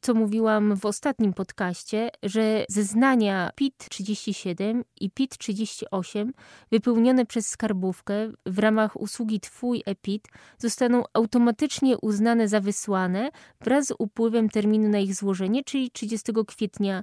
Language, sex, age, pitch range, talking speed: Polish, female, 20-39, 200-235 Hz, 125 wpm